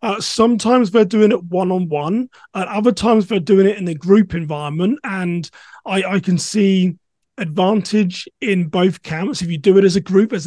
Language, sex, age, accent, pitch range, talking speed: English, male, 30-49, British, 170-195 Hz, 200 wpm